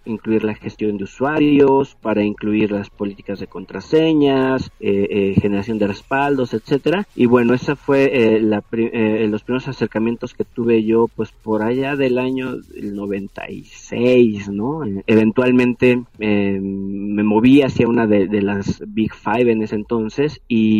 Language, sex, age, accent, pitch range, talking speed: Spanish, male, 40-59, Mexican, 105-120 Hz, 150 wpm